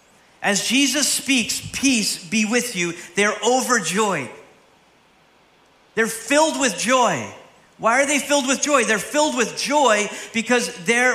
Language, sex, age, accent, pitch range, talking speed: English, male, 40-59, American, 130-220 Hz, 135 wpm